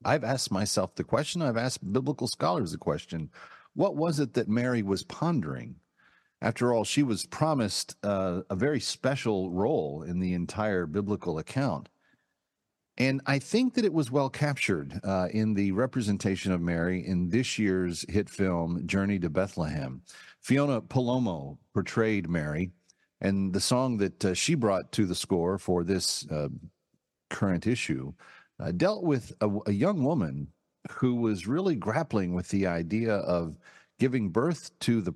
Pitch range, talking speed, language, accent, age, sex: 90-125 Hz, 160 wpm, English, American, 50-69, male